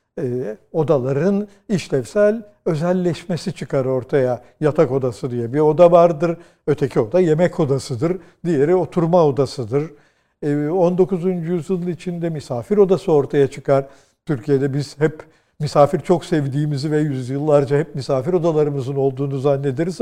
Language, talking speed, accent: Turkish, 120 wpm, native